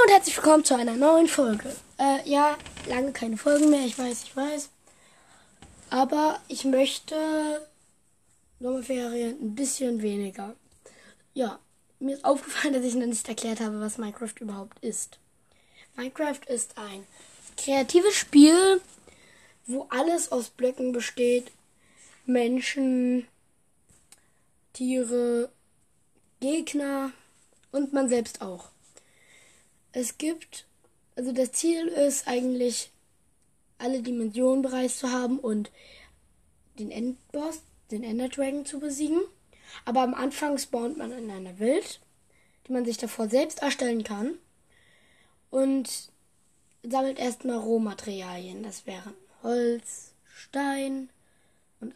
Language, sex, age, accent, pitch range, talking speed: German, female, 10-29, German, 235-280 Hz, 115 wpm